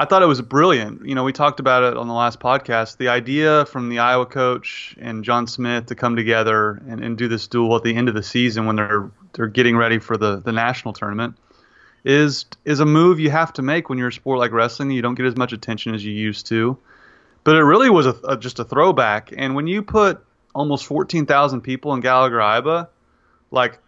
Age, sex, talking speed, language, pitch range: 30-49, male, 230 wpm, English, 115-140 Hz